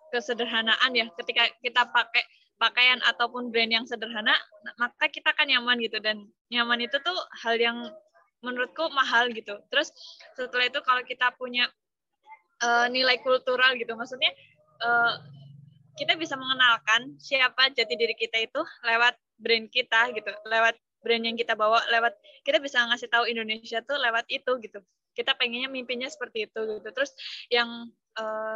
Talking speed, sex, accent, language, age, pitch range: 150 wpm, female, native, Indonesian, 10-29, 230-255 Hz